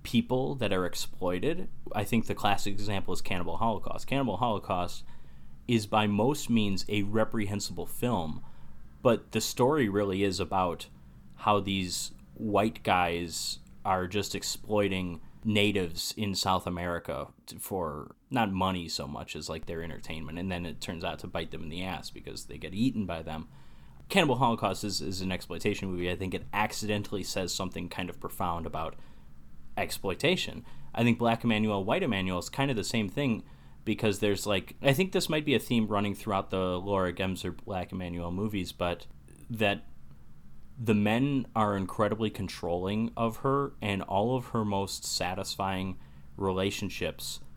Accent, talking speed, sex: American, 160 wpm, male